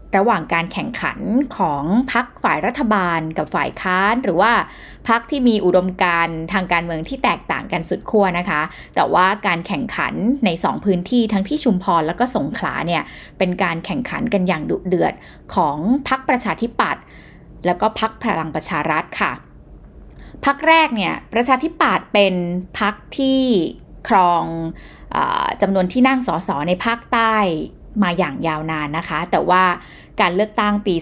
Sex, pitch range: female, 175-230 Hz